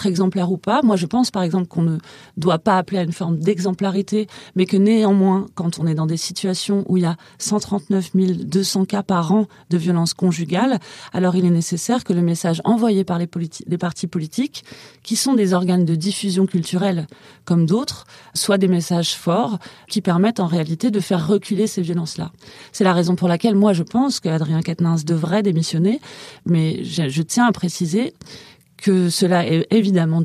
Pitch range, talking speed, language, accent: 170-205 Hz, 190 wpm, French, French